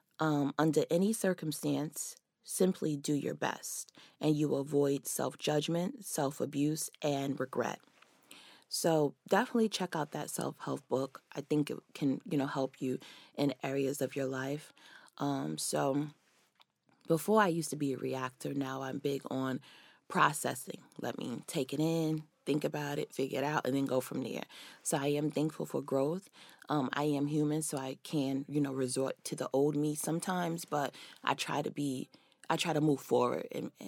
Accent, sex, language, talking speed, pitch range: American, female, English, 170 wpm, 140-160 Hz